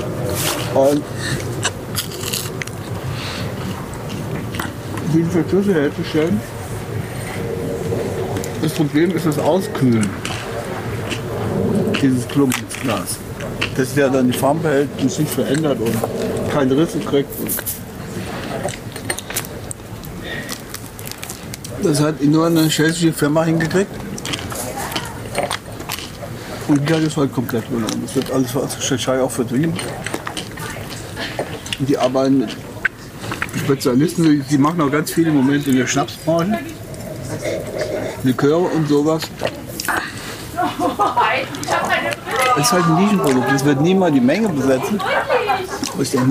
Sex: male